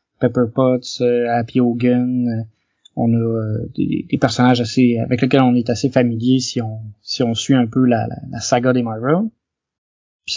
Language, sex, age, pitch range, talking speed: French, male, 20-39, 120-150 Hz, 175 wpm